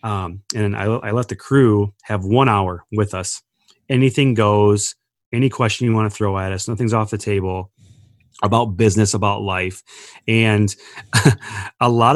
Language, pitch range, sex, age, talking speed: English, 100-115 Hz, male, 30-49, 165 wpm